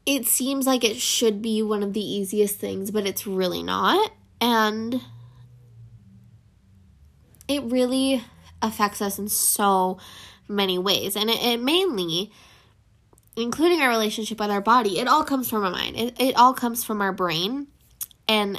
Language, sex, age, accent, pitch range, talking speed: English, female, 10-29, American, 195-260 Hz, 155 wpm